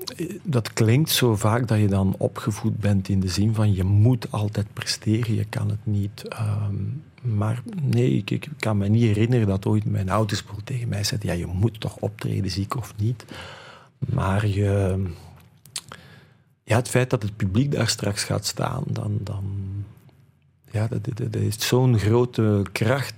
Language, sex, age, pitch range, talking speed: Dutch, male, 40-59, 100-125 Hz, 175 wpm